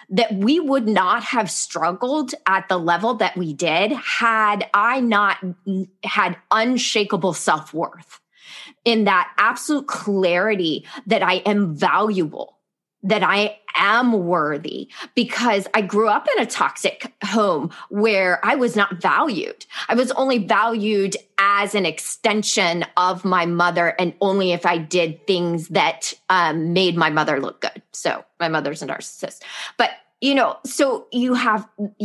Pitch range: 180-225 Hz